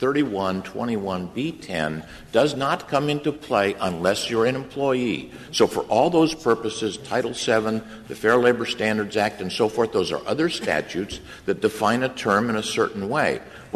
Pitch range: 105-140 Hz